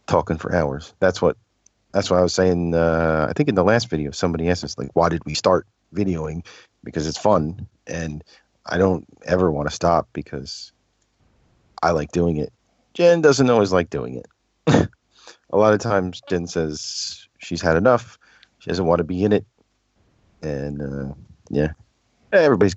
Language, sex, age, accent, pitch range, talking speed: English, male, 40-59, American, 85-110 Hz, 175 wpm